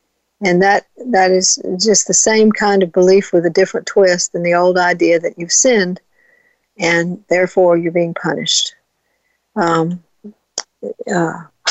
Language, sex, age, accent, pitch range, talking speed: English, female, 60-79, American, 180-215 Hz, 145 wpm